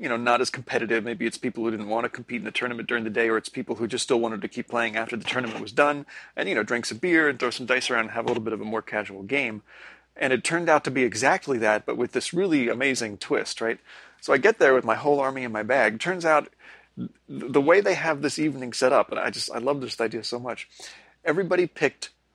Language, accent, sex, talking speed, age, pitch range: English, American, male, 275 wpm, 30-49, 110-140 Hz